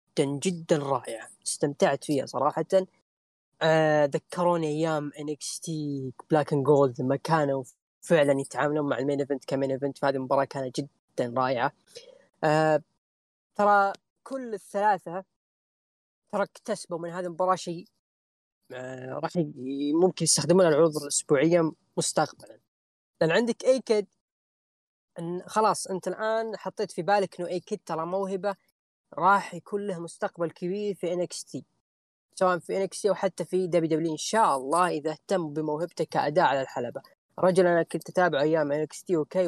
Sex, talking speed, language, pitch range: female, 140 wpm, Arabic, 150-190 Hz